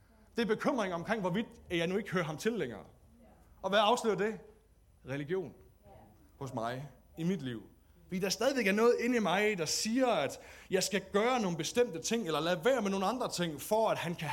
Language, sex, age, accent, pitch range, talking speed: Danish, male, 30-49, native, 130-195 Hz, 210 wpm